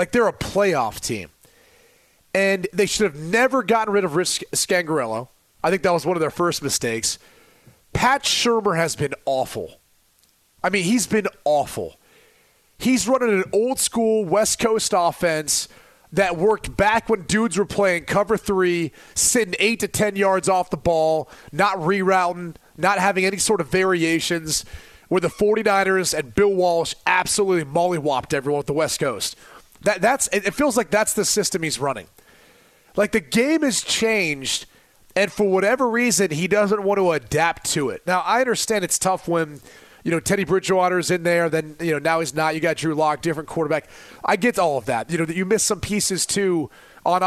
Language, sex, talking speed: English, male, 180 wpm